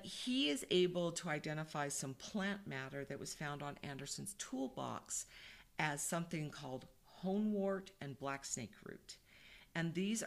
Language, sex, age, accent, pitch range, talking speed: English, female, 50-69, American, 140-180 Hz, 145 wpm